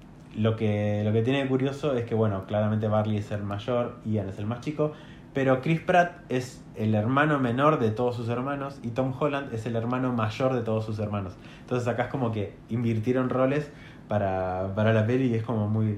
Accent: Argentinian